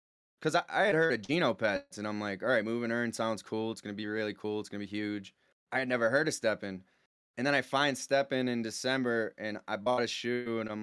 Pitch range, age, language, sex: 105-120 Hz, 20-39, English, male